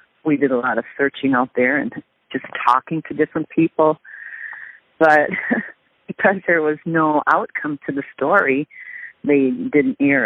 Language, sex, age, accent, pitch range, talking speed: English, female, 40-59, American, 140-175 Hz, 150 wpm